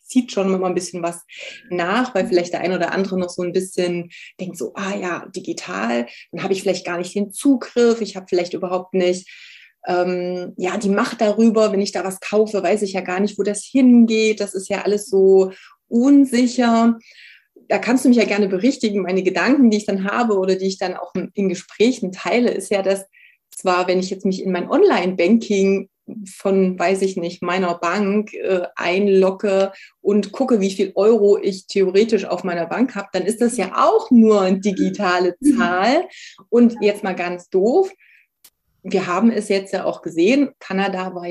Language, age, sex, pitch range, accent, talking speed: German, 30-49, female, 185-230 Hz, German, 195 wpm